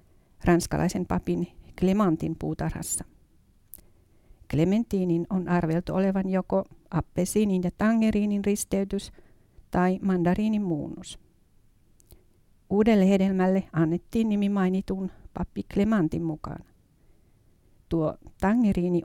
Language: Finnish